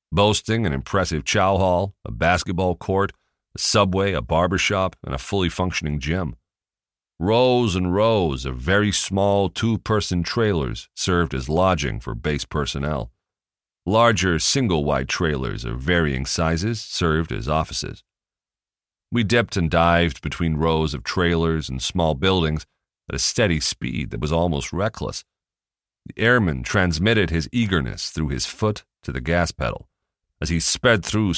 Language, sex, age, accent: English, male, 40-59, American